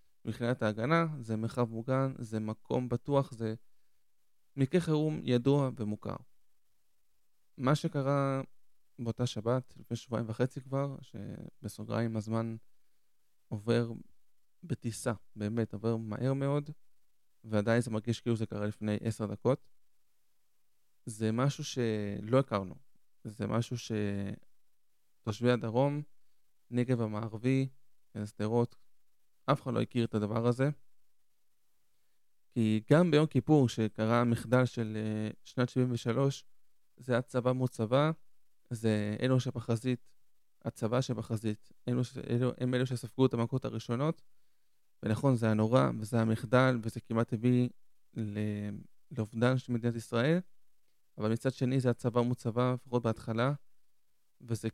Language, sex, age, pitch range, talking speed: Hebrew, male, 20-39, 110-130 Hz, 115 wpm